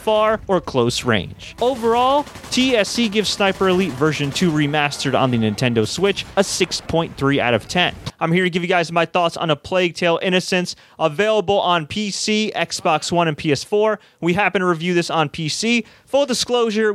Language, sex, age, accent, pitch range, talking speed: English, male, 30-49, American, 175-220 Hz, 175 wpm